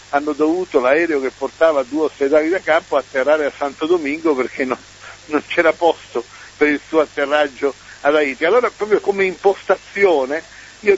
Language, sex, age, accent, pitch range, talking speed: Italian, male, 60-79, native, 130-185 Hz, 160 wpm